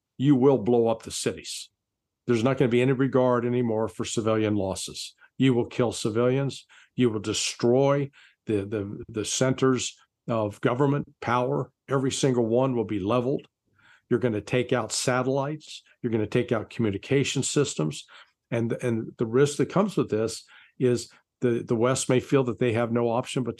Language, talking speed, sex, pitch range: English, 180 wpm, male, 110-135 Hz